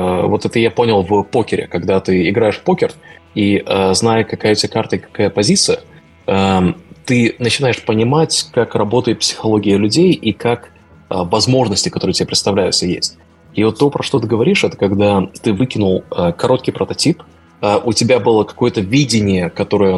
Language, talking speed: Russian, 160 wpm